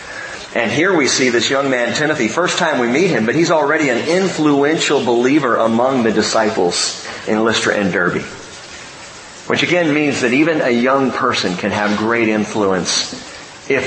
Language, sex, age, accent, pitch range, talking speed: English, male, 40-59, American, 140-225 Hz, 170 wpm